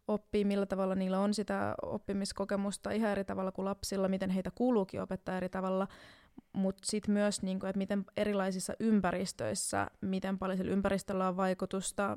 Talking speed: 155 wpm